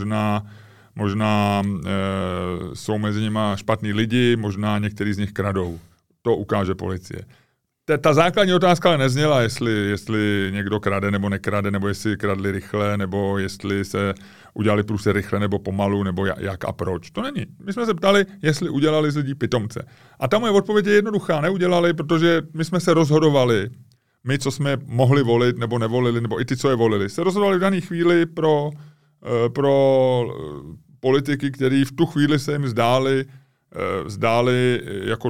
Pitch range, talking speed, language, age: 105-145 Hz, 165 wpm, Czech, 30-49